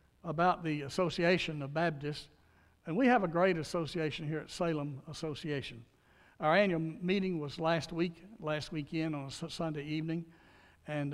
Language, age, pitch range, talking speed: English, 60-79, 155-195 Hz, 150 wpm